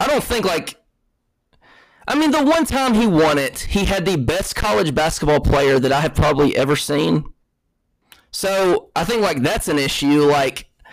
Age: 20-39